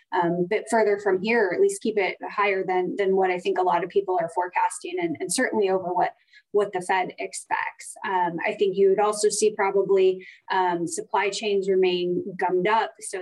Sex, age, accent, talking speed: female, 20-39, American, 215 wpm